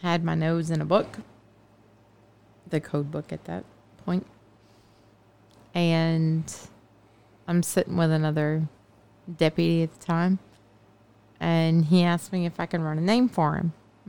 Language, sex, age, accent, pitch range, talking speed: English, female, 20-39, American, 115-180 Hz, 140 wpm